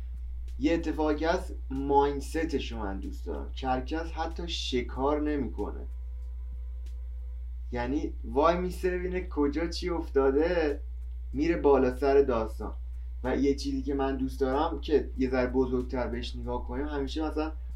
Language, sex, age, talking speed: Persian, male, 30-49, 130 wpm